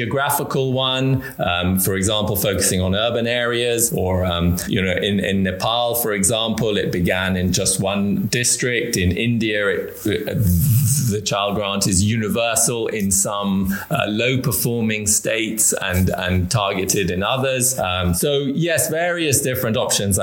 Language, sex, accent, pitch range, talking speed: English, male, British, 95-120 Hz, 150 wpm